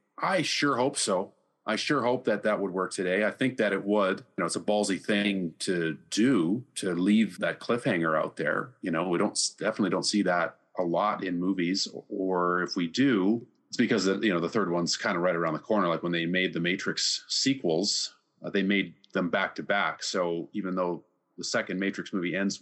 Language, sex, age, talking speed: English, male, 40-59, 220 wpm